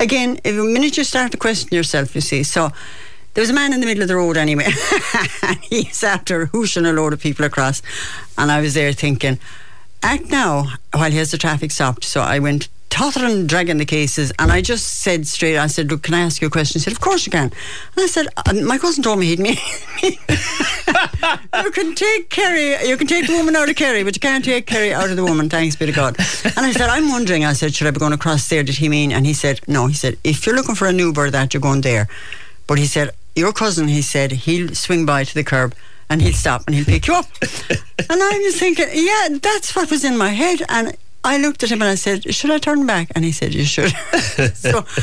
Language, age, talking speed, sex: English, 60-79, 250 wpm, female